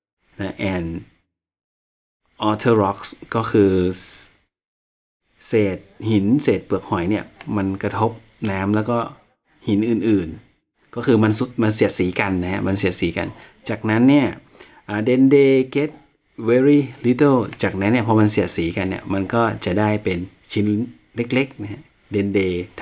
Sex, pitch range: male, 95-115 Hz